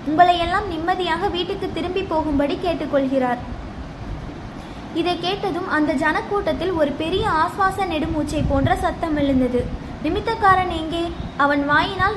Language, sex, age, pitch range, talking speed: Tamil, female, 20-39, 295-375 Hz, 110 wpm